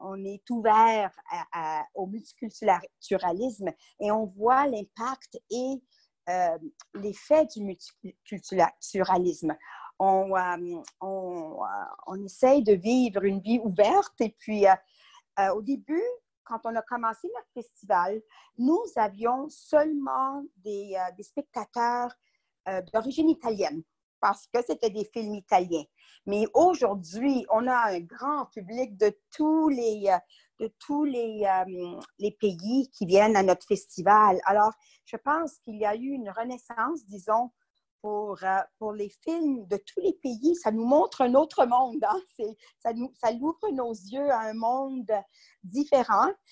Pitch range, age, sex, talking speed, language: 200-275 Hz, 50-69, female, 145 wpm, French